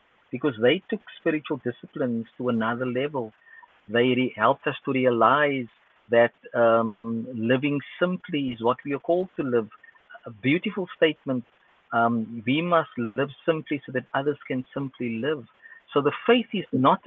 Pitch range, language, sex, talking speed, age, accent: 120-150 Hz, English, male, 155 wpm, 50-69, Indian